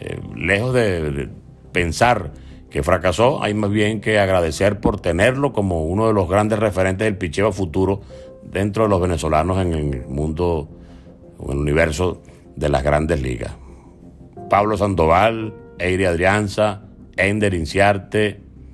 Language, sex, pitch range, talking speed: Spanish, male, 80-110 Hz, 135 wpm